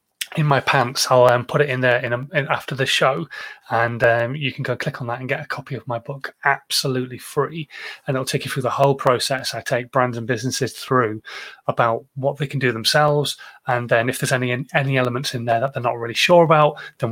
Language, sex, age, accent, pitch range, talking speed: English, male, 30-49, British, 125-160 Hz, 235 wpm